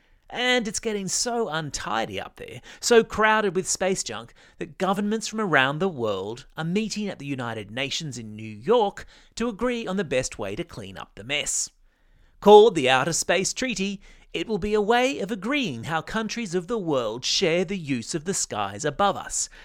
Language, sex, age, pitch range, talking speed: English, male, 30-49, 145-205 Hz, 190 wpm